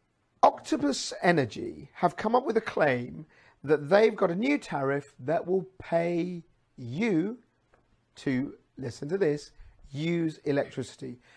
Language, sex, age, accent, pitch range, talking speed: English, male, 40-59, British, 135-175 Hz, 125 wpm